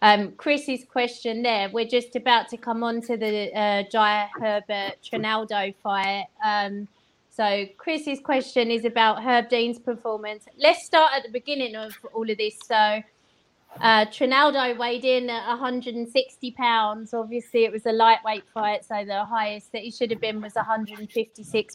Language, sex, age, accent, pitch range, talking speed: English, female, 30-49, British, 215-250 Hz, 165 wpm